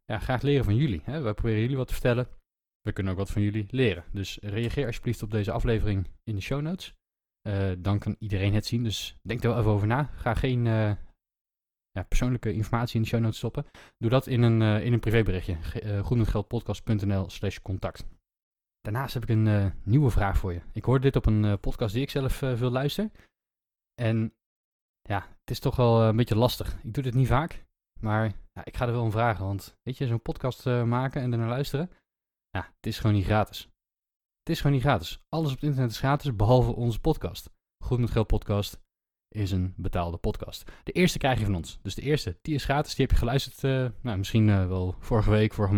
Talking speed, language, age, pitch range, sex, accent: 220 wpm, Dutch, 20-39, 100-125 Hz, male, Dutch